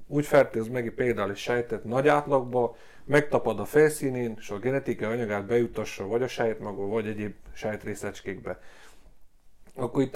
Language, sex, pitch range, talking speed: Hungarian, male, 110-140 Hz, 140 wpm